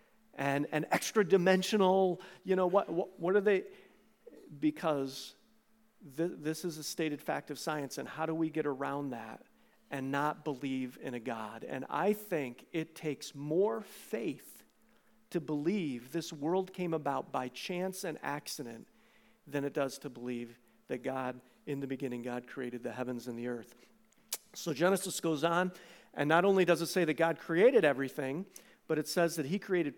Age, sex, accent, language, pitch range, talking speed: 50-69, male, American, English, 140-185 Hz, 175 wpm